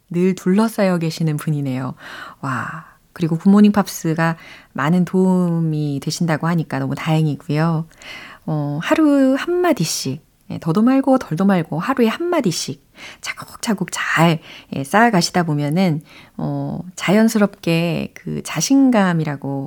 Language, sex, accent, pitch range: Korean, female, native, 155-220 Hz